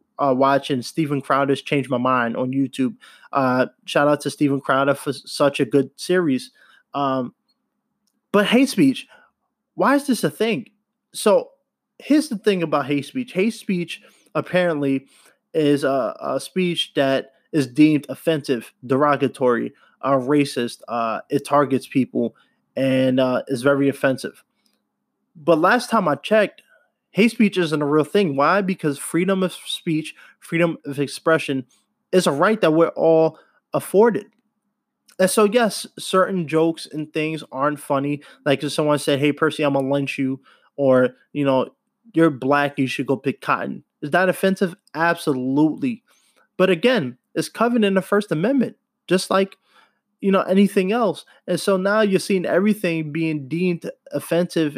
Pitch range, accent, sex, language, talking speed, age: 140-200 Hz, American, male, English, 155 wpm, 20-39